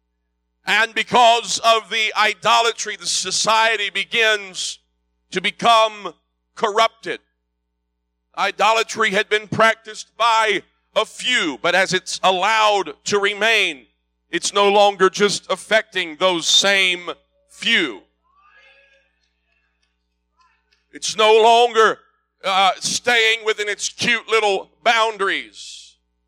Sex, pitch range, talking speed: male, 180-230 Hz, 95 wpm